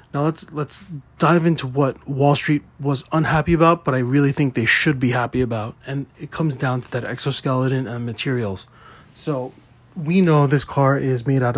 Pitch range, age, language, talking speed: 125-150 Hz, 20-39, English, 190 wpm